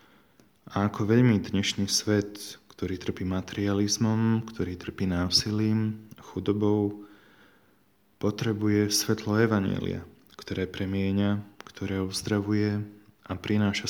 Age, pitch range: 20-39, 95-105 Hz